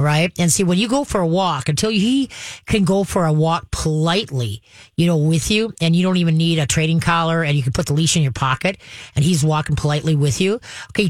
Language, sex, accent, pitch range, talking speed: English, female, American, 155-190 Hz, 245 wpm